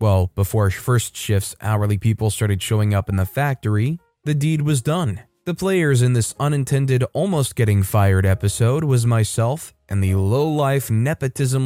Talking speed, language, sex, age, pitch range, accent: 160 wpm, English, male, 20-39, 110-140 Hz, American